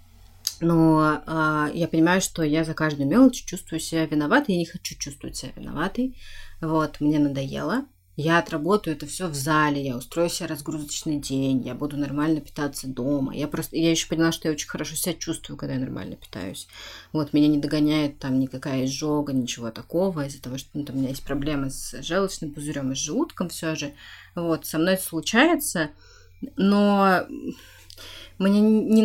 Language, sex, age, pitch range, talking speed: Russian, female, 30-49, 140-165 Hz, 175 wpm